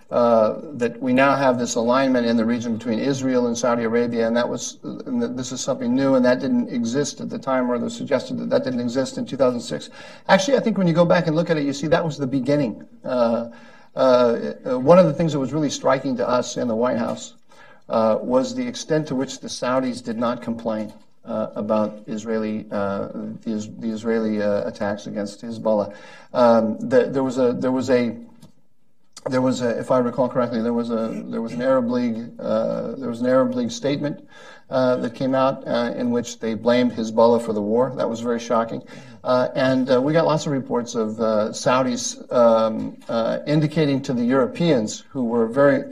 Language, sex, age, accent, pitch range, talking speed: English, male, 50-69, American, 115-190 Hz, 215 wpm